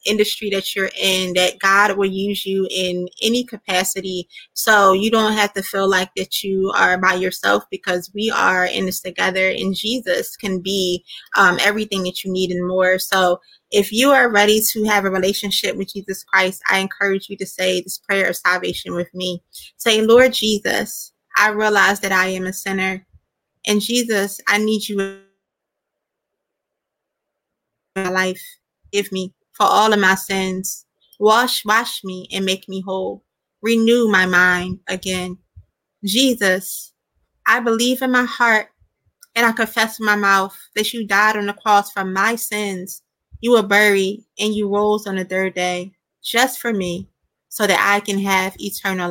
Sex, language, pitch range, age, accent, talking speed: female, English, 185-215 Hz, 20-39, American, 170 wpm